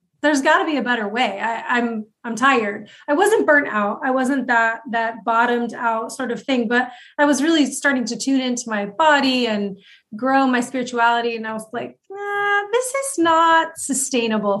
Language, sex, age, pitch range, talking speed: English, female, 30-49, 210-260 Hz, 190 wpm